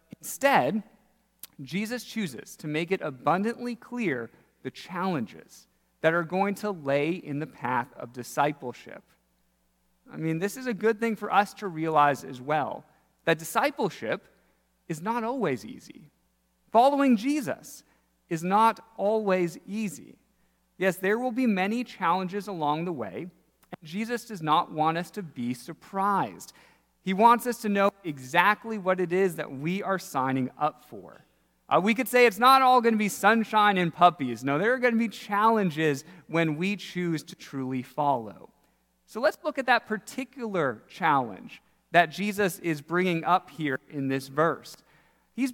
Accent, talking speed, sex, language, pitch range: American, 160 wpm, male, English, 155-220 Hz